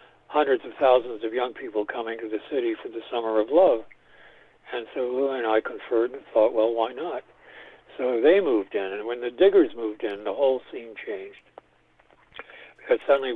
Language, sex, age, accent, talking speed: English, male, 60-79, American, 190 wpm